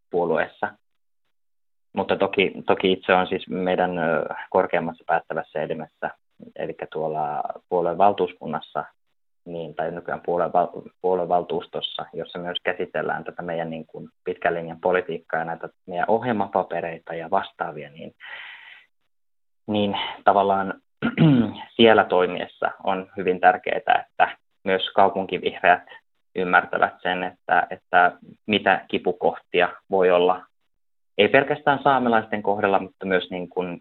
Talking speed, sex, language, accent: 110 wpm, male, Finnish, native